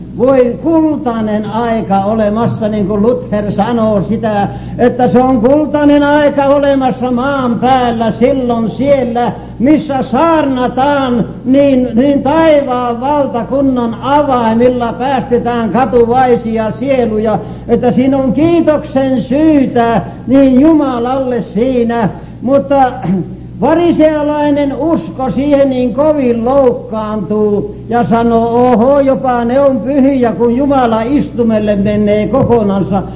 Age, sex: 60-79, male